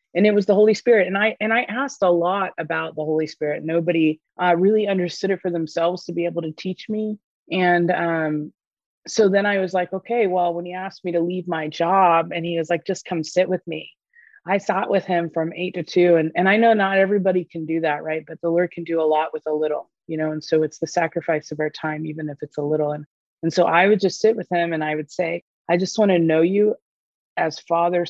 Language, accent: English, American